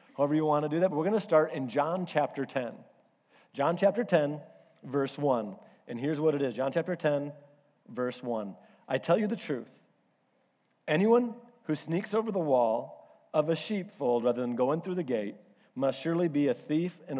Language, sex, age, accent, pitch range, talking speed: English, male, 40-59, American, 145-185 Hz, 195 wpm